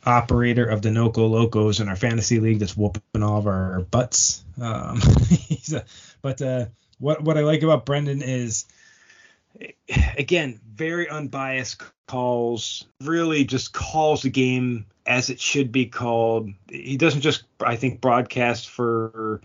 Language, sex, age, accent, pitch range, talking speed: English, male, 30-49, American, 110-130 Hz, 140 wpm